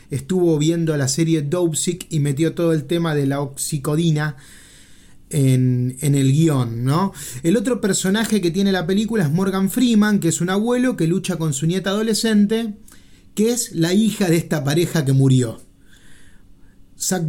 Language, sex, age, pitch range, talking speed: Spanish, male, 30-49, 150-215 Hz, 170 wpm